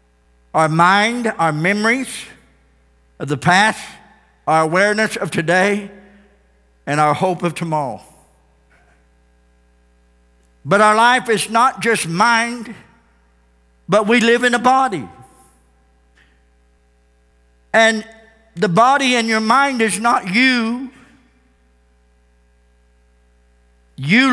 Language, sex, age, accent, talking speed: English, male, 60-79, American, 95 wpm